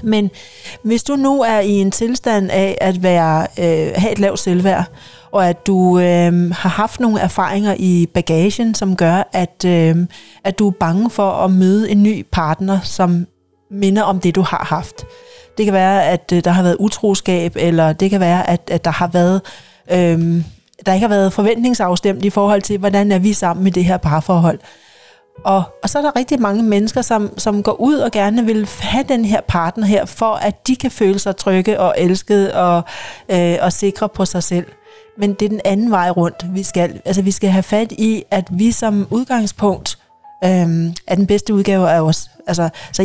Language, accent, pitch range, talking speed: Danish, native, 180-220 Hz, 195 wpm